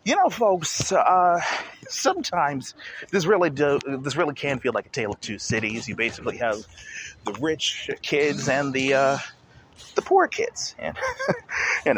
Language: English